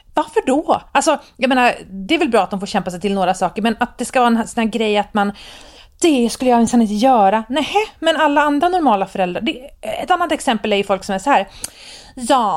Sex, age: female, 30-49